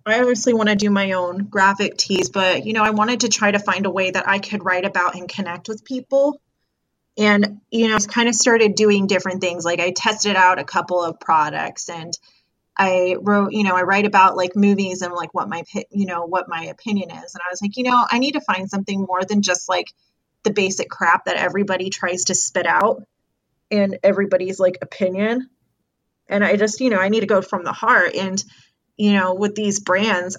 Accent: American